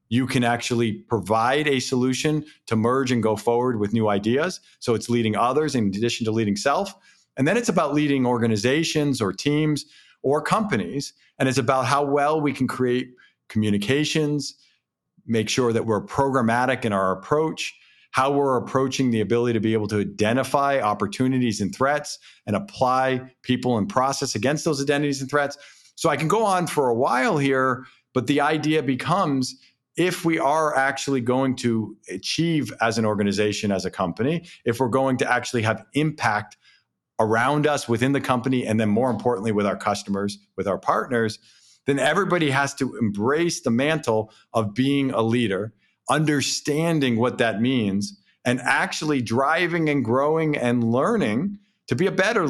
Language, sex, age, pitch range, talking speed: English, male, 50-69, 115-145 Hz, 170 wpm